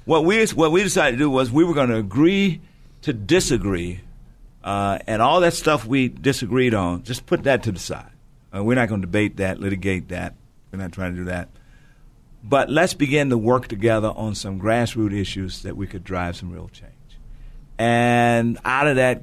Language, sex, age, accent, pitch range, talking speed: English, male, 50-69, American, 95-120 Hz, 205 wpm